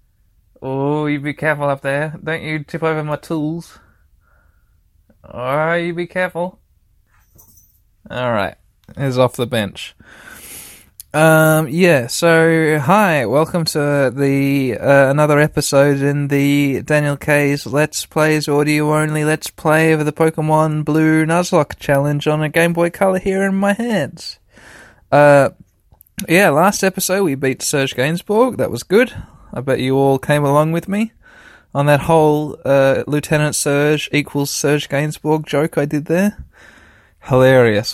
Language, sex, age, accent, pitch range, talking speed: English, male, 20-39, Australian, 120-155 Hz, 140 wpm